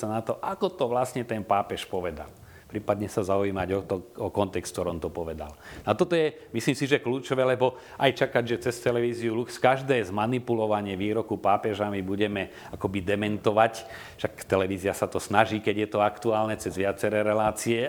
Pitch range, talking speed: 95-115 Hz, 170 wpm